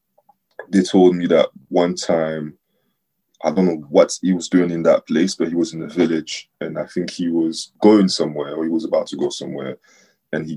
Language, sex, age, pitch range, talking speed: English, male, 20-39, 85-105 Hz, 215 wpm